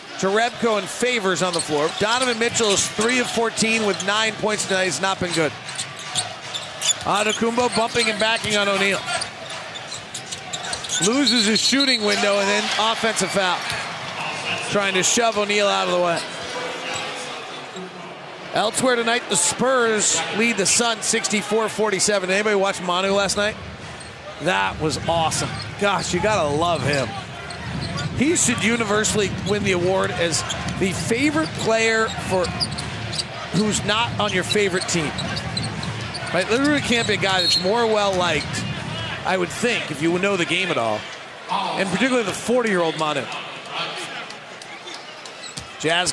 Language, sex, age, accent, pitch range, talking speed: English, male, 40-59, American, 180-225 Hz, 140 wpm